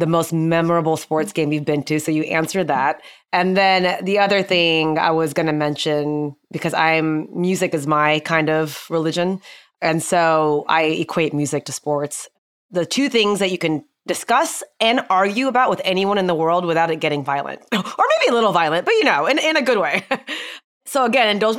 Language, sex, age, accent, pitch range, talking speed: English, female, 20-39, American, 160-195 Hz, 195 wpm